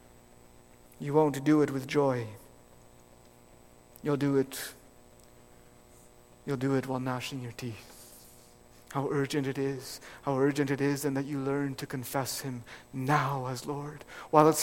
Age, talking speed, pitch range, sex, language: 50-69, 150 wpm, 130-200 Hz, male, English